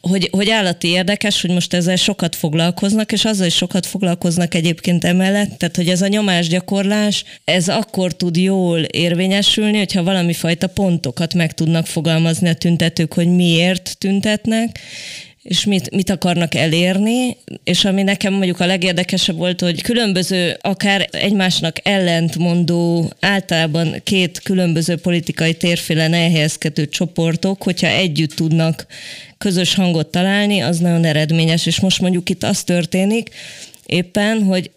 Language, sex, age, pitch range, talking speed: Hungarian, female, 20-39, 170-190 Hz, 135 wpm